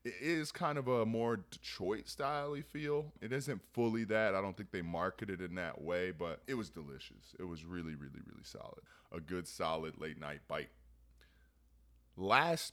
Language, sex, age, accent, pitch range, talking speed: English, male, 20-39, American, 85-110 Hz, 175 wpm